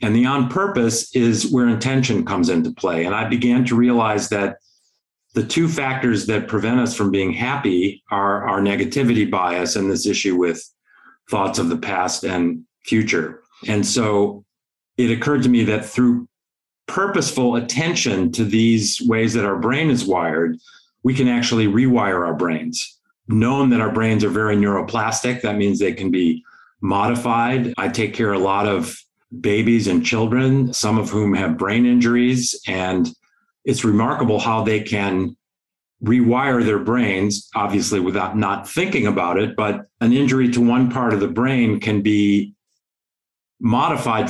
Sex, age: male, 40-59